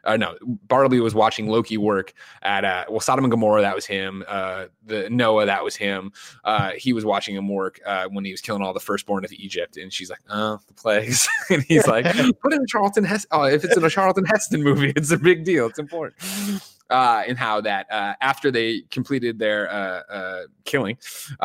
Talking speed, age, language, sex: 220 wpm, 20-39, English, male